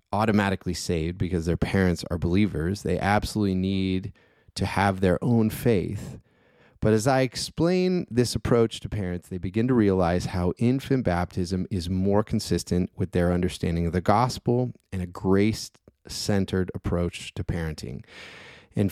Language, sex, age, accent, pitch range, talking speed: English, male, 30-49, American, 90-110 Hz, 150 wpm